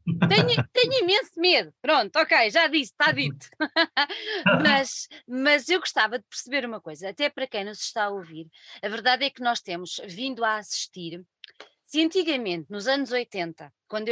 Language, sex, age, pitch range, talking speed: Portuguese, female, 20-39, 210-290 Hz, 175 wpm